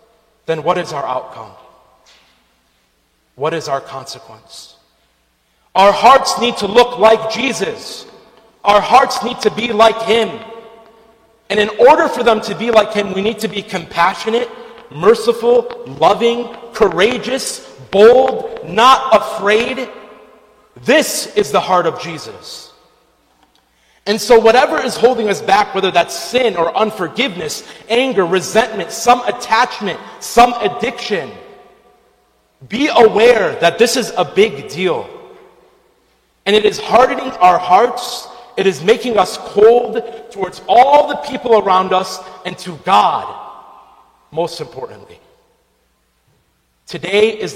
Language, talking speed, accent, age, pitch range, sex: English, 125 wpm, American, 40-59, 185-250 Hz, male